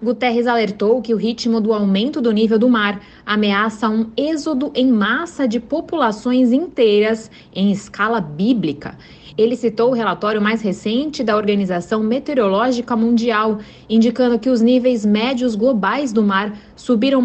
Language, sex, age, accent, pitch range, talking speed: Portuguese, female, 20-39, Brazilian, 200-250 Hz, 145 wpm